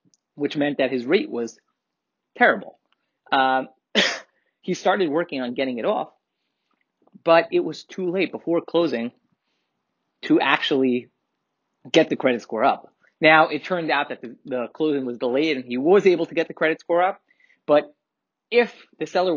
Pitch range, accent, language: 130-185 Hz, American, English